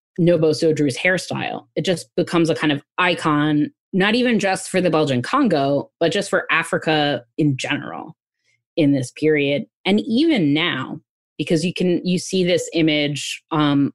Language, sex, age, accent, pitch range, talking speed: English, female, 20-39, American, 150-185 Hz, 160 wpm